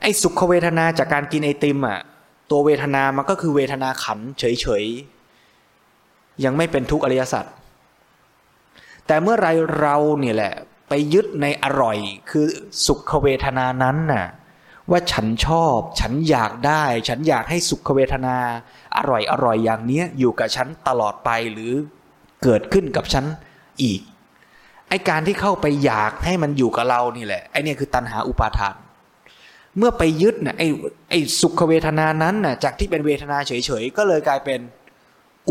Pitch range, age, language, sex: 125-165 Hz, 20-39, Thai, male